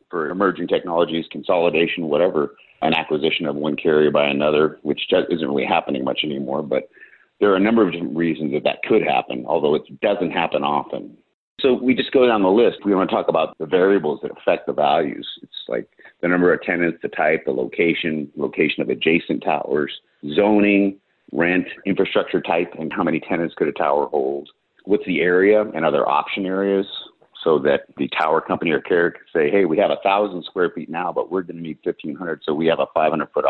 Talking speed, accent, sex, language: 200 wpm, American, male, English